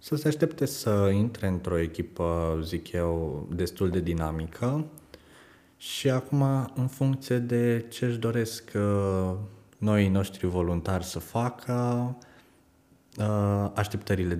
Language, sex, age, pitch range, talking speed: Romanian, male, 20-39, 85-115 Hz, 110 wpm